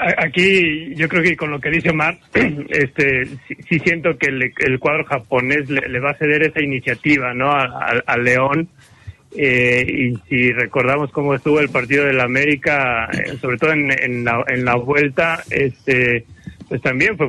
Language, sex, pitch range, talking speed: Spanish, male, 135-165 Hz, 180 wpm